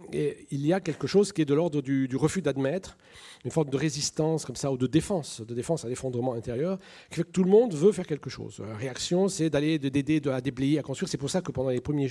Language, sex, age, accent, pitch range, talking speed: French, male, 40-59, French, 130-165 Hz, 270 wpm